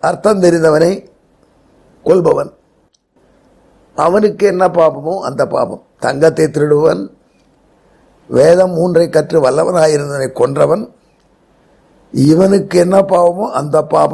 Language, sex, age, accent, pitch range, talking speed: Tamil, male, 60-79, native, 140-180 Hz, 90 wpm